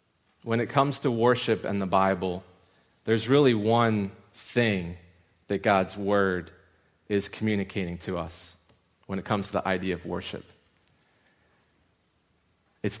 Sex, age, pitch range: male, 30-49, 95-115 Hz